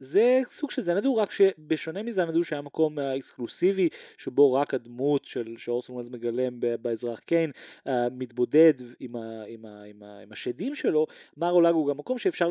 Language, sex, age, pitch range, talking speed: Hebrew, male, 30-49, 130-205 Hz, 175 wpm